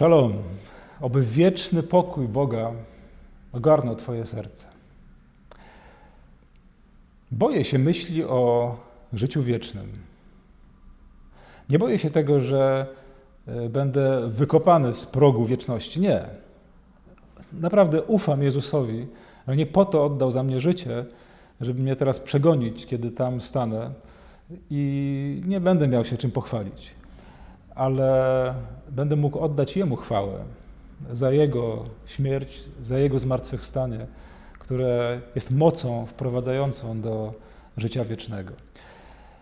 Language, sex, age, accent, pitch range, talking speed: Polish, male, 40-59, native, 120-160 Hz, 105 wpm